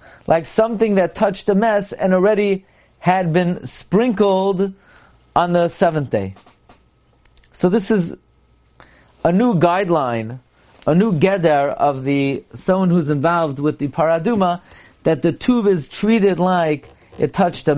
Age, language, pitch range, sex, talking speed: 40-59, English, 145-190 Hz, male, 140 wpm